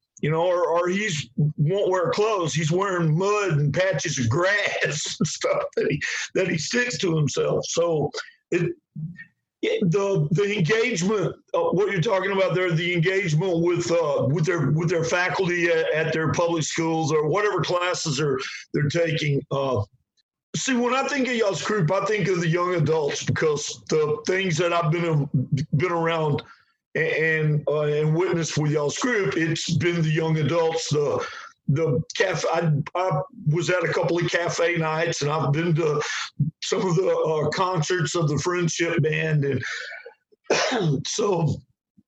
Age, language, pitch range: 50-69, English, 155-190 Hz